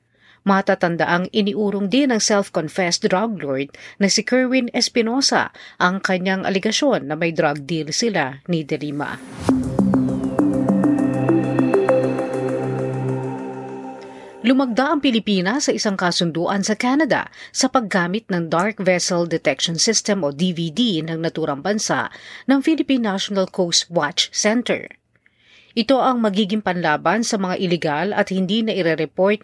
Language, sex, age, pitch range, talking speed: Filipino, female, 40-59, 165-220 Hz, 120 wpm